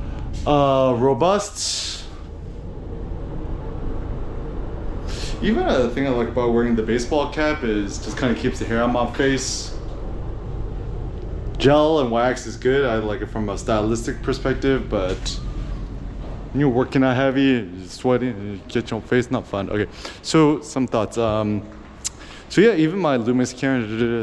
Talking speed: 140 wpm